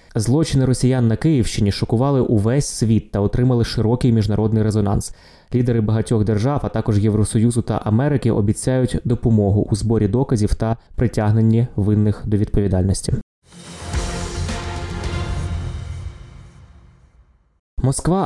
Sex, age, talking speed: male, 20-39, 100 wpm